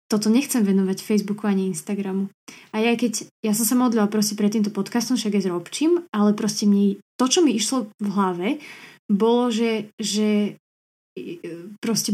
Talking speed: 165 wpm